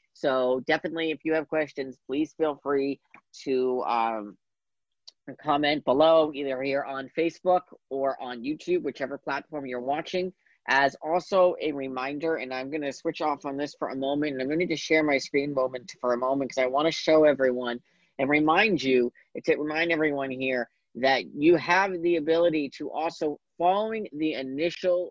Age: 40-59